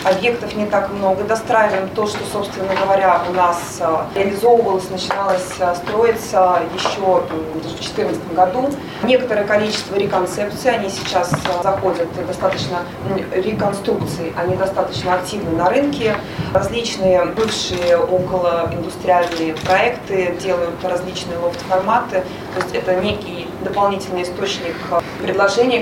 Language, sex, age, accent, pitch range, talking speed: Russian, female, 20-39, native, 180-210 Hz, 110 wpm